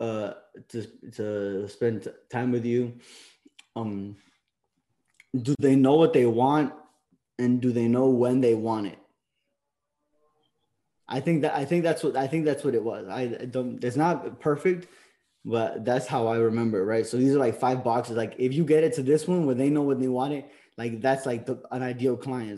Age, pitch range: 20-39, 115-135 Hz